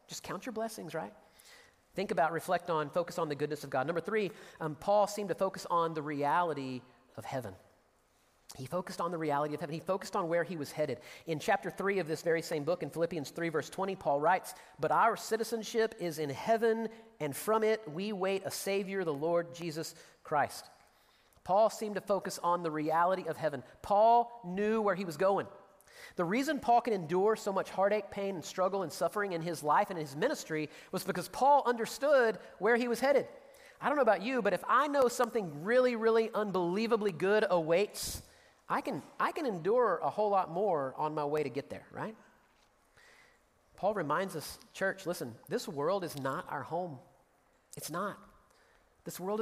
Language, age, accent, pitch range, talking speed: English, 40-59, American, 160-215 Hz, 195 wpm